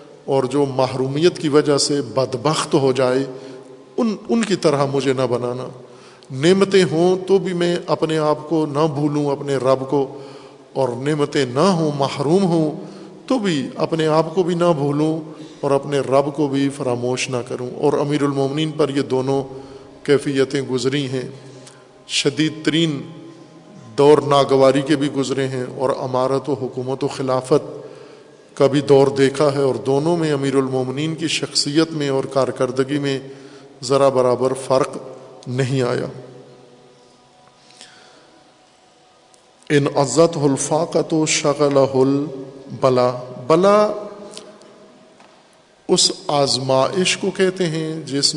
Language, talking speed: Urdu, 135 wpm